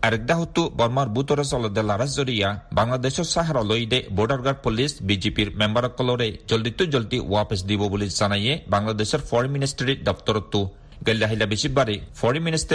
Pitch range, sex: 105-140 Hz, male